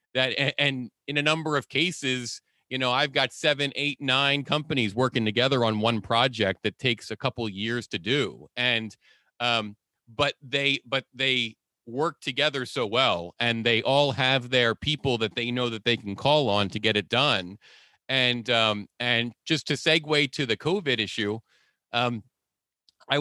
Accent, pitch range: American, 115-140 Hz